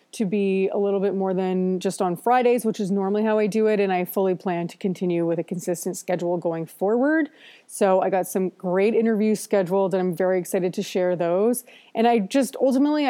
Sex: female